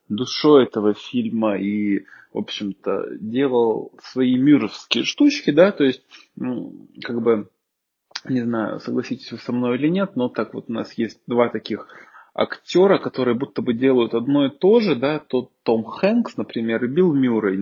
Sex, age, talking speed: male, 20-39, 165 wpm